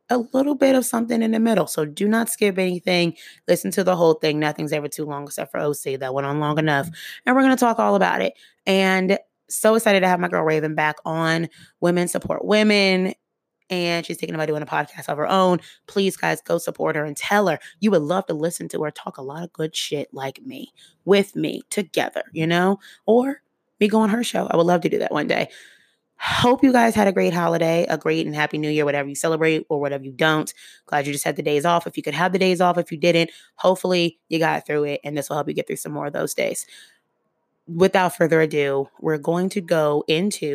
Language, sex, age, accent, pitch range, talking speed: English, female, 20-39, American, 155-210 Hz, 245 wpm